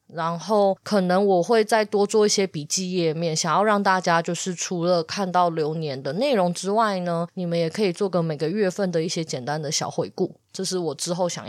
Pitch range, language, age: 175-235 Hz, Chinese, 20-39